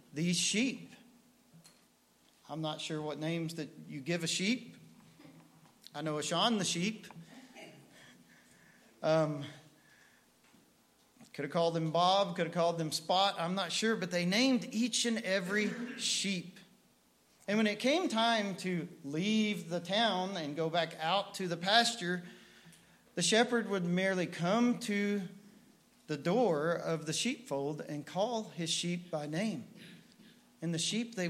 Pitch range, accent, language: 160-210 Hz, American, English